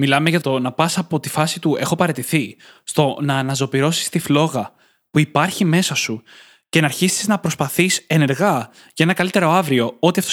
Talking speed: 185 wpm